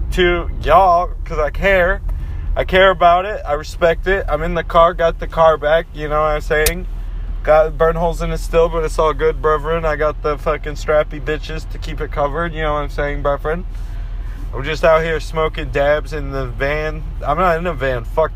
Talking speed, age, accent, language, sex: 220 wpm, 20-39, American, English, male